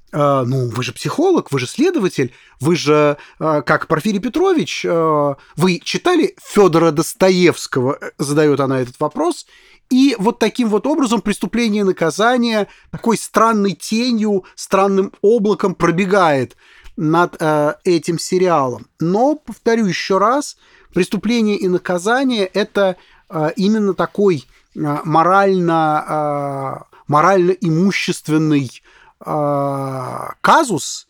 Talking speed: 95 wpm